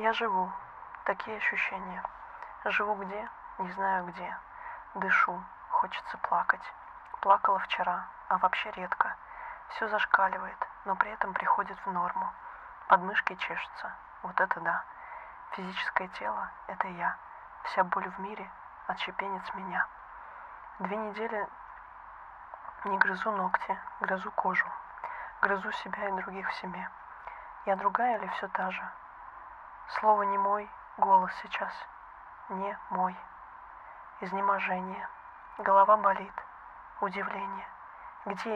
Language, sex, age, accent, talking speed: Russian, female, 20-39, native, 110 wpm